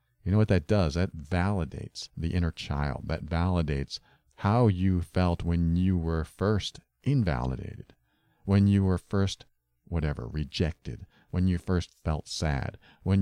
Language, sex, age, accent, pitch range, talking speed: English, male, 40-59, American, 80-105 Hz, 145 wpm